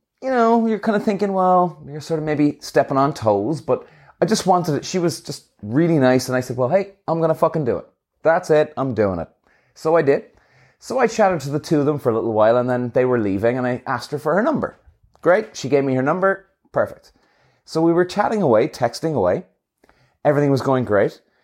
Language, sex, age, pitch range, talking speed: English, male, 30-49, 125-165 Hz, 240 wpm